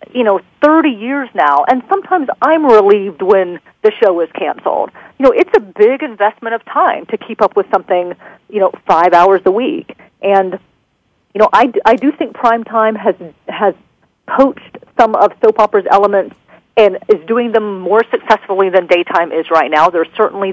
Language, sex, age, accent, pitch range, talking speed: English, female, 40-59, American, 180-245 Hz, 180 wpm